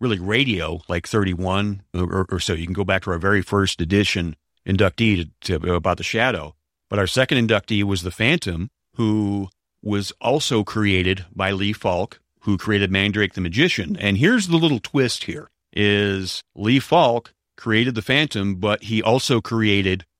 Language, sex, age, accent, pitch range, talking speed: English, male, 40-59, American, 95-115 Hz, 170 wpm